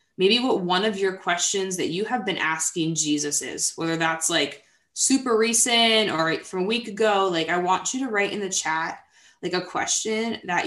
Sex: female